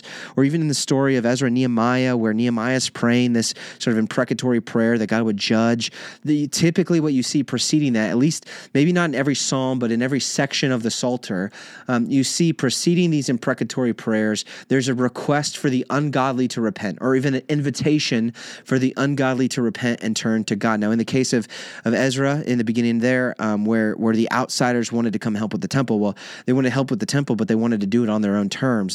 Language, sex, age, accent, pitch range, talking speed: English, male, 30-49, American, 110-135 Hz, 230 wpm